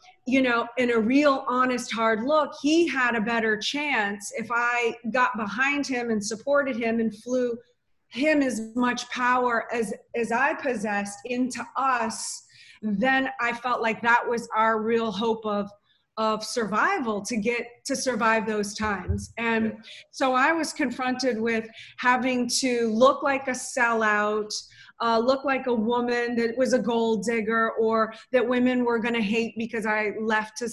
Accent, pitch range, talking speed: American, 220-255 Hz, 165 wpm